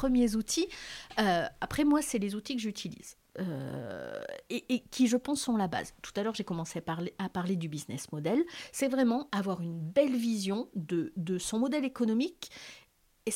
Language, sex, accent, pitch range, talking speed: French, female, French, 185-250 Hz, 195 wpm